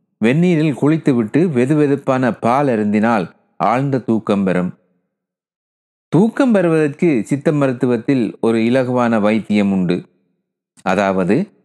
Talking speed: 95 wpm